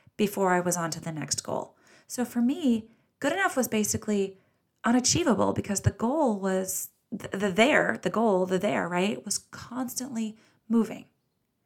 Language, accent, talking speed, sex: English, American, 165 wpm, female